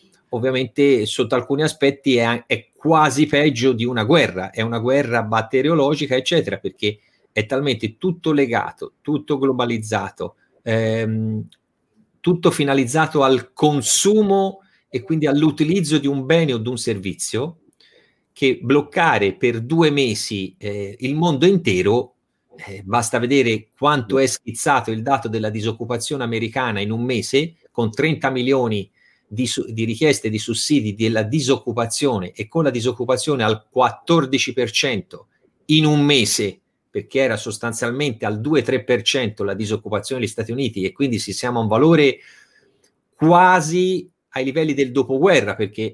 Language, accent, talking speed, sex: Italian, native, 135 wpm, male